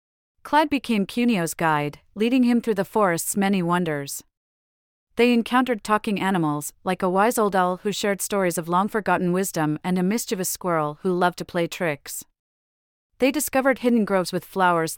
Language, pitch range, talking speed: English, 165-215 Hz, 165 wpm